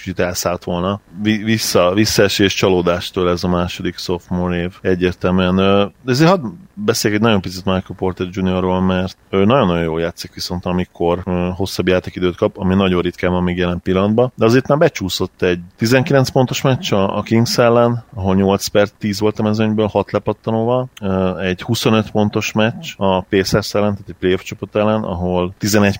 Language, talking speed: Hungarian, 175 wpm